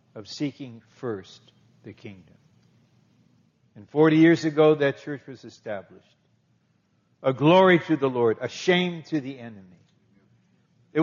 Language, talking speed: English, 130 wpm